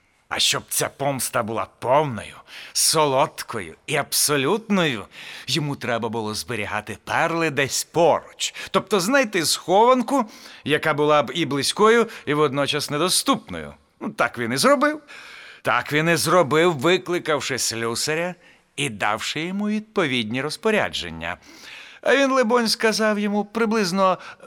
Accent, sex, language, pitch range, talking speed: native, male, Ukrainian, 155-225 Hz, 120 wpm